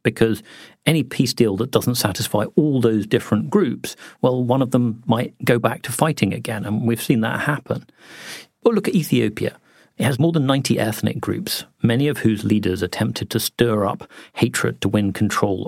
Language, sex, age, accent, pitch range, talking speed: English, male, 40-59, British, 105-130 Hz, 190 wpm